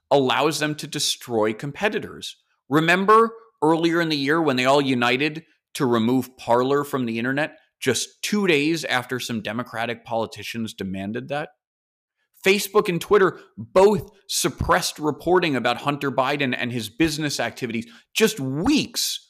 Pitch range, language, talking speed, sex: 120-165 Hz, English, 135 wpm, male